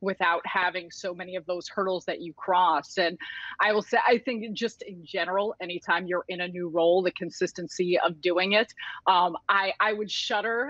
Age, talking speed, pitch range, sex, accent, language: 30-49, 195 wpm, 175-210 Hz, female, American, English